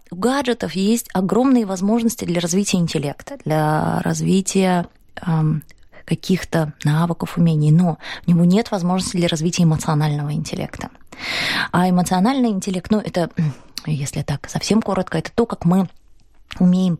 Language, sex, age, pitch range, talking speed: Russian, female, 20-39, 160-210 Hz, 130 wpm